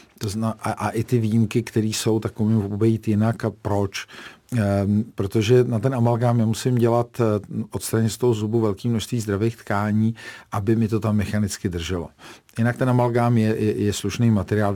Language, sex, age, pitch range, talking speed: Czech, male, 50-69, 105-120 Hz, 165 wpm